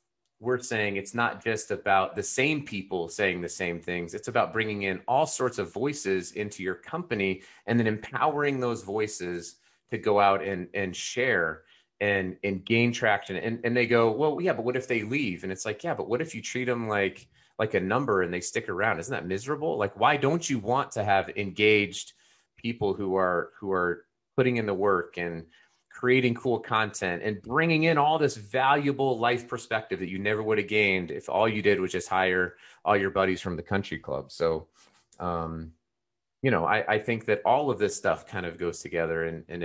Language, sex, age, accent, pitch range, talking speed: English, male, 30-49, American, 95-120 Hz, 210 wpm